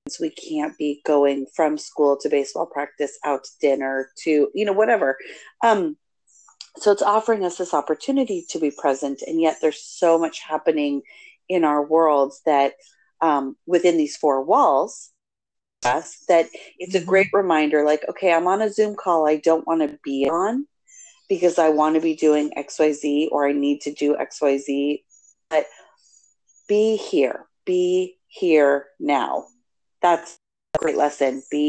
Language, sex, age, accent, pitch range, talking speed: English, female, 40-59, American, 145-170 Hz, 155 wpm